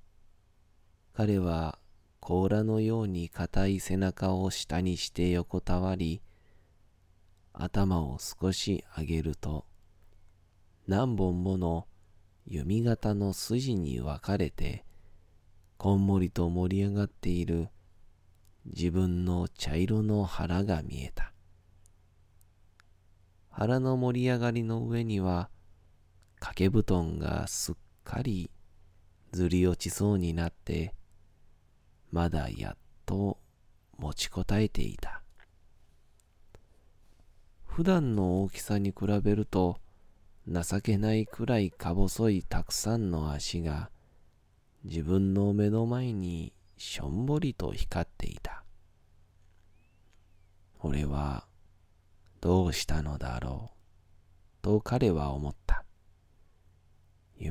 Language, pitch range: Japanese, 85-100 Hz